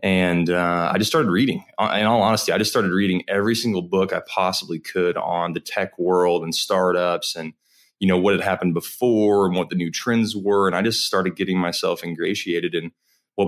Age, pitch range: 20-39, 85-95 Hz